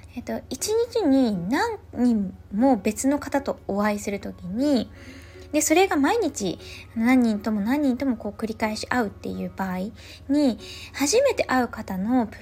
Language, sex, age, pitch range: Japanese, female, 20-39, 215-315 Hz